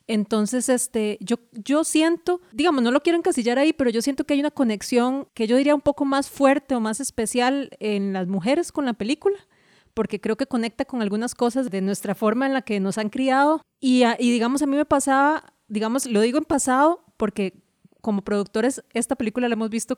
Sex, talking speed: female, 210 wpm